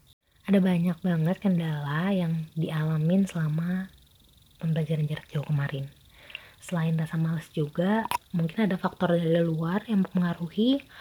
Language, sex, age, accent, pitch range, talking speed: Indonesian, female, 20-39, native, 155-185 Hz, 120 wpm